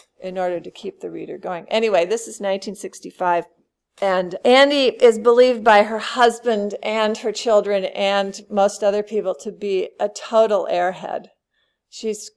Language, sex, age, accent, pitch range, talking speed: English, female, 40-59, American, 185-220 Hz, 150 wpm